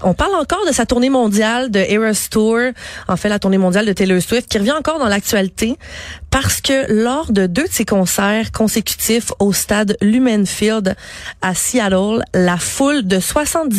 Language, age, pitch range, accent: French, 30-49, 185-225 Hz, Canadian